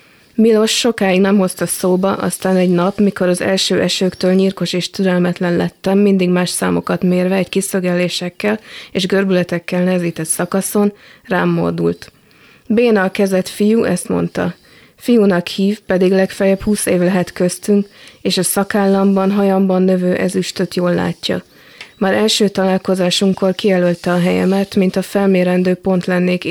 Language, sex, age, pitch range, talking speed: Hungarian, female, 20-39, 180-200 Hz, 140 wpm